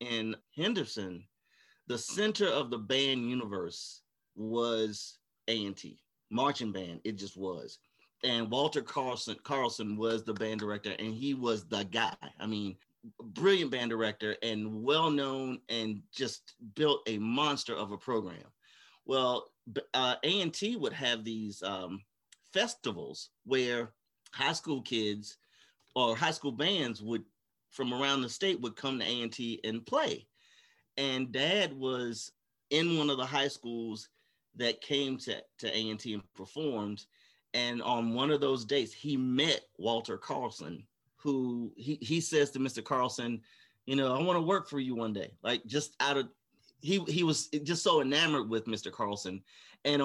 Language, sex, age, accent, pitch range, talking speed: English, male, 40-59, American, 110-145 Hz, 155 wpm